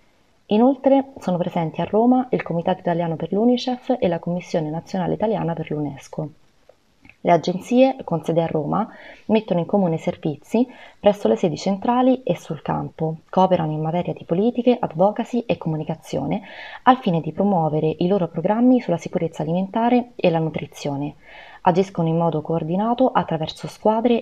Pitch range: 160-220 Hz